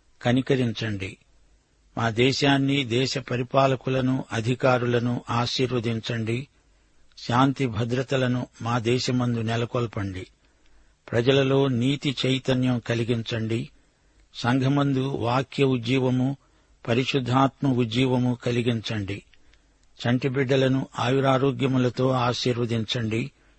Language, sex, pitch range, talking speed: Telugu, male, 120-135 Hz, 65 wpm